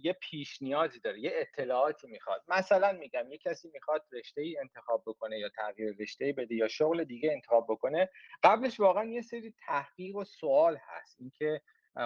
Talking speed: 160 wpm